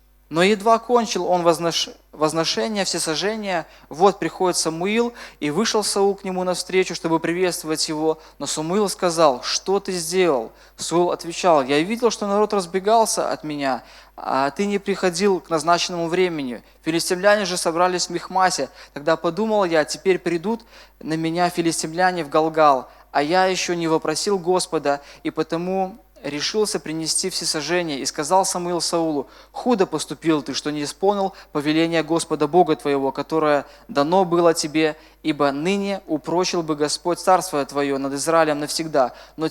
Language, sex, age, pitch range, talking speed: Russian, male, 20-39, 150-185 Hz, 145 wpm